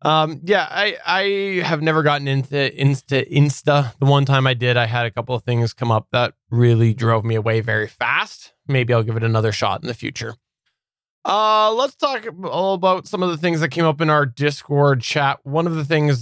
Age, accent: 20-39, American